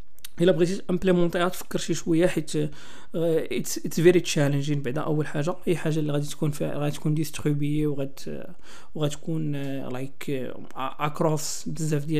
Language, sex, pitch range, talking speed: Arabic, male, 150-180 Hz, 105 wpm